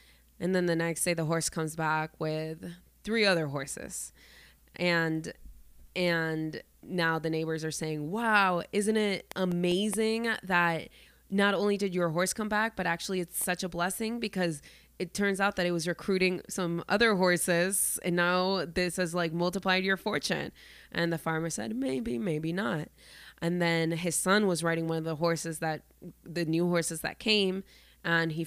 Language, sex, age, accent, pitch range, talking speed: English, female, 20-39, American, 165-190 Hz, 175 wpm